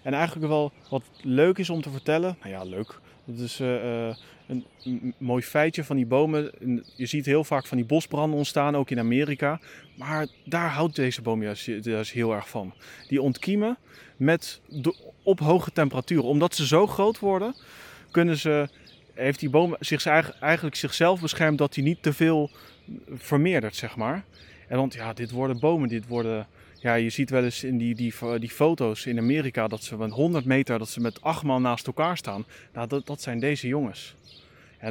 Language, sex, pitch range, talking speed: Dutch, male, 120-160 Hz, 190 wpm